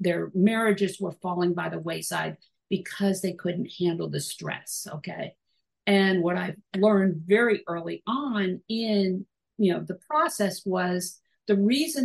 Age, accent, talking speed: 50-69, American, 135 wpm